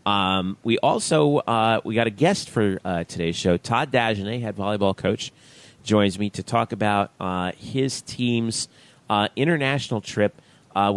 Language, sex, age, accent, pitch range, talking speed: English, male, 40-59, American, 90-120 Hz, 160 wpm